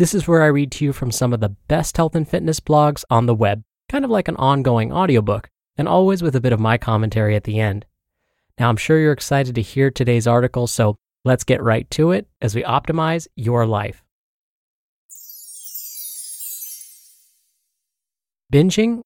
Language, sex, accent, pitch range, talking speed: English, male, American, 110-145 Hz, 180 wpm